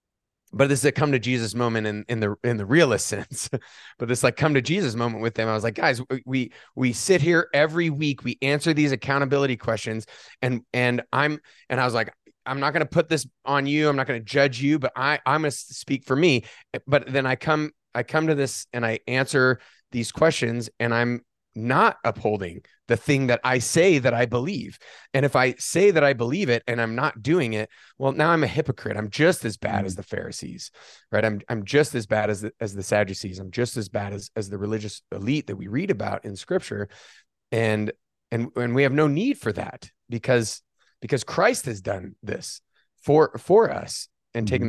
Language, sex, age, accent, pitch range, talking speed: English, male, 30-49, American, 110-140 Hz, 215 wpm